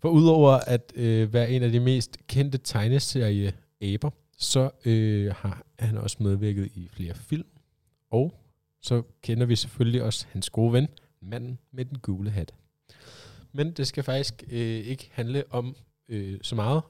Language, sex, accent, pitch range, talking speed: Danish, male, native, 110-140 Hz, 150 wpm